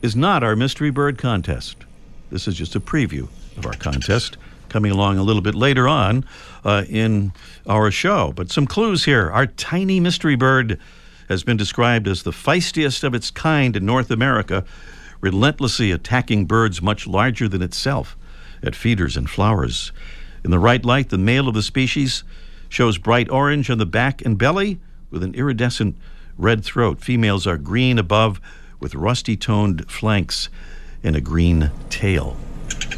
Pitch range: 95-135 Hz